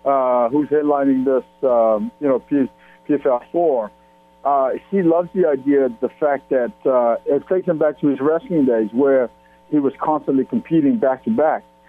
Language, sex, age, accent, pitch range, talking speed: English, male, 60-79, American, 120-155 Hz, 150 wpm